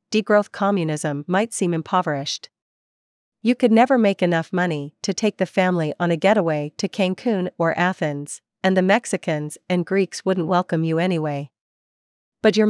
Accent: American